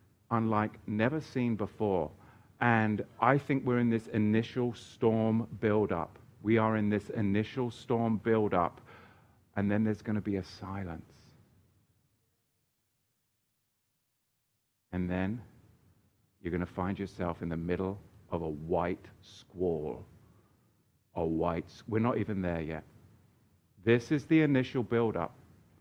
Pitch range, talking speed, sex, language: 95-115 Hz, 130 wpm, male, English